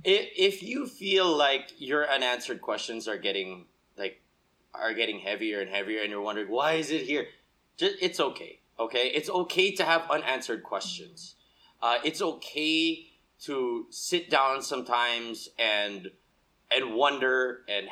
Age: 30-49